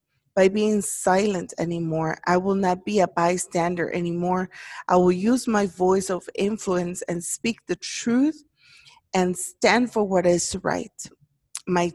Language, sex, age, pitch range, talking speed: English, female, 20-39, 175-215 Hz, 145 wpm